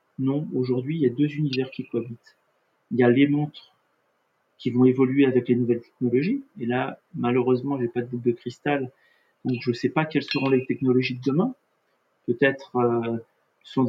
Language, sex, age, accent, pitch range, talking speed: French, male, 40-59, French, 125-145 Hz, 195 wpm